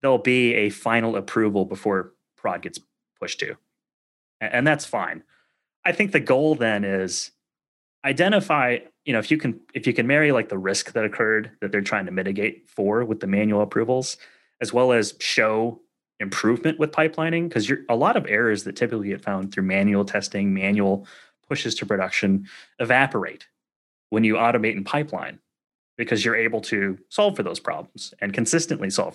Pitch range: 105-155 Hz